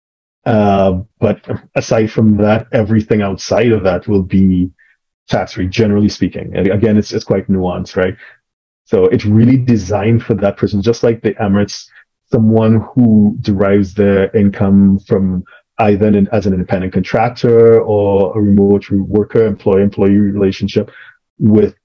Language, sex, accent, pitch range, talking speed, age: English, male, Canadian, 95-110 Hz, 140 wpm, 30-49